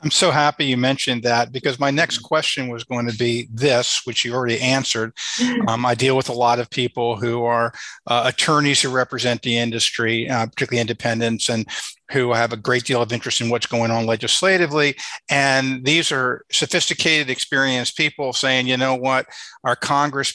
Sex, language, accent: male, English, American